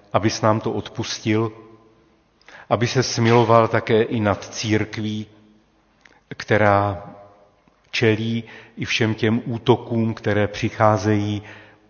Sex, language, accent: male, Czech, native